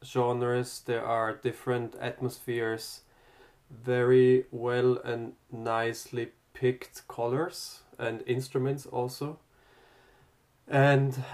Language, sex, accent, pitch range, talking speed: English, male, German, 120-135 Hz, 80 wpm